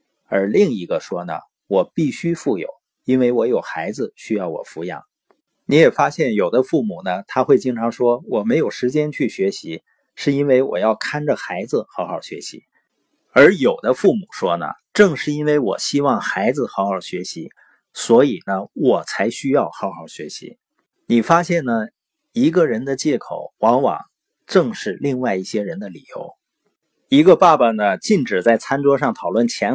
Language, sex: Chinese, male